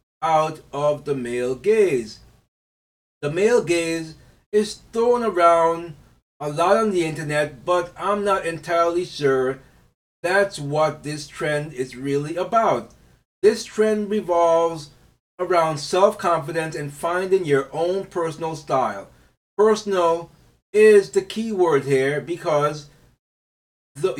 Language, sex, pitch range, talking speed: English, male, 140-180 Hz, 115 wpm